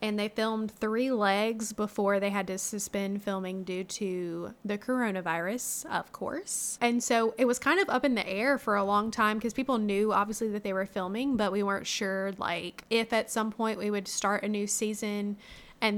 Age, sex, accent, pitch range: 20-39, female, American, 200-230 Hz